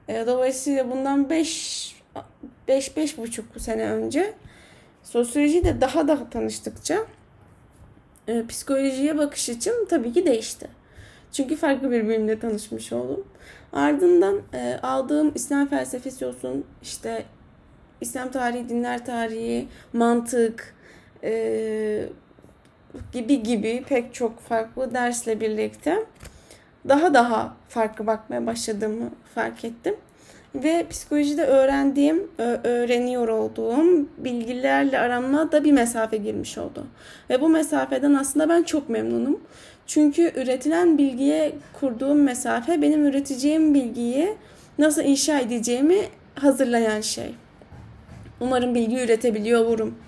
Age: 10-29